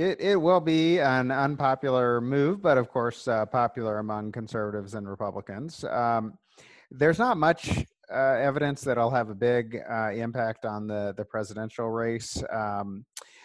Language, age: English, 30-49